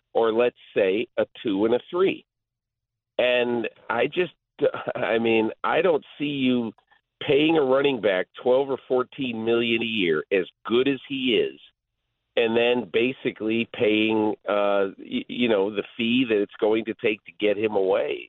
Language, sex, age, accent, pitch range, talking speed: English, male, 50-69, American, 110-160 Hz, 165 wpm